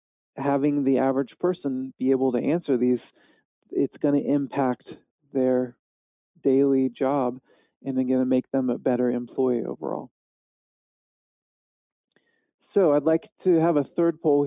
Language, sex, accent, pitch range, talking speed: English, male, American, 130-150 Hz, 140 wpm